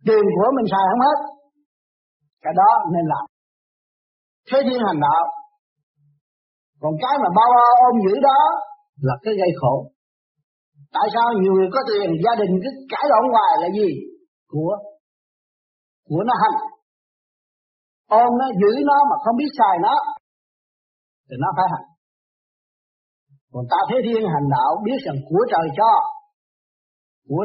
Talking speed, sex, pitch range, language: 150 wpm, male, 185-285 Hz, Vietnamese